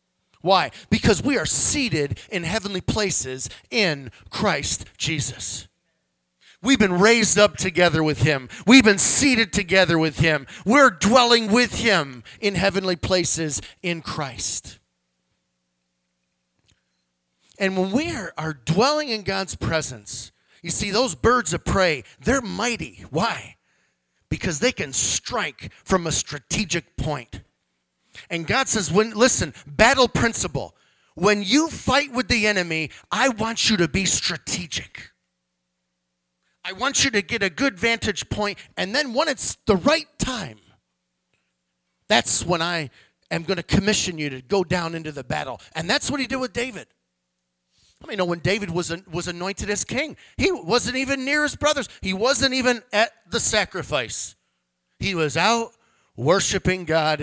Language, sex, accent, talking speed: English, male, American, 150 wpm